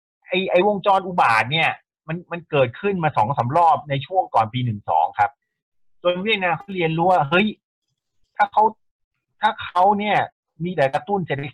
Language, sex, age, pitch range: Thai, male, 30-49, 125-180 Hz